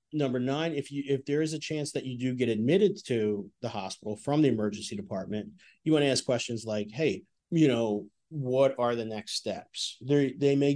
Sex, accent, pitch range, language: male, American, 105-140 Hz, English